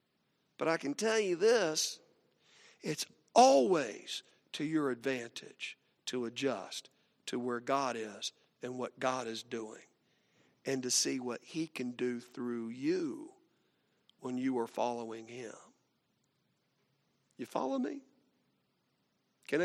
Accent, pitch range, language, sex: American, 125-200 Hz, English, male